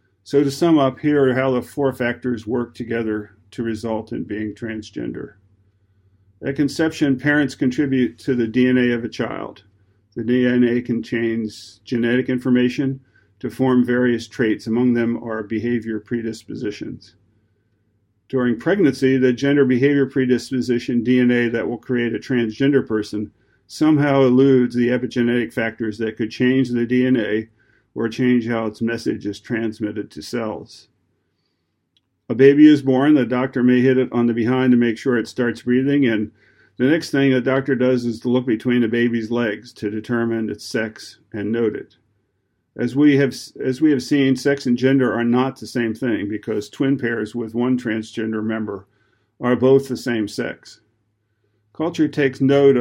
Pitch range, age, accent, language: 110-130 Hz, 50-69, American, English